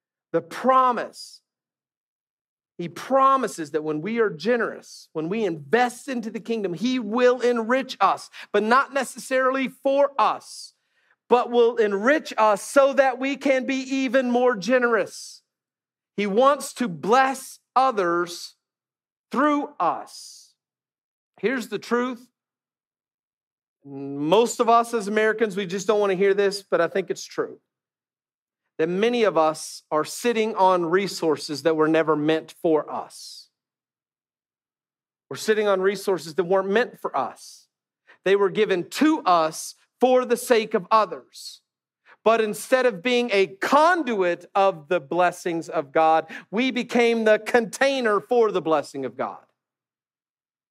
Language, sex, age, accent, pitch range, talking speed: English, male, 40-59, American, 180-250 Hz, 135 wpm